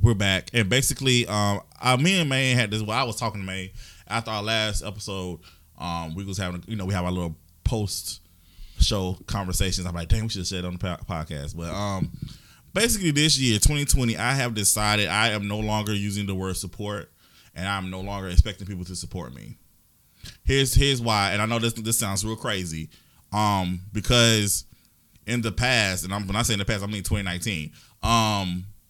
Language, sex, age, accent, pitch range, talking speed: English, male, 20-39, American, 95-125 Hz, 210 wpm